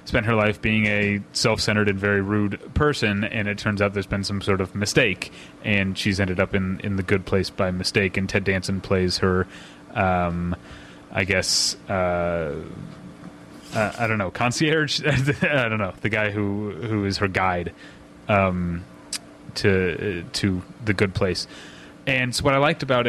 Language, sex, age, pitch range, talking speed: English, male, 30-49, 100-120 Hz, 175 wpm